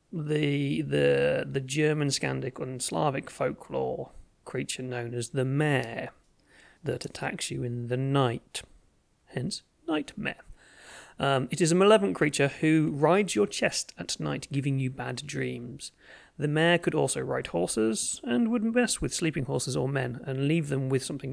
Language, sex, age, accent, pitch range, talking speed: English, male, 30-49, British, 125-150 Hz, 160 wpm